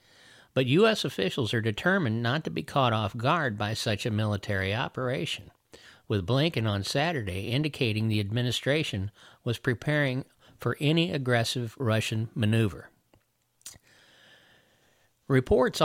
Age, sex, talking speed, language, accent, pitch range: 50-69, male, 115 wpm, English, American, 110-140 Hz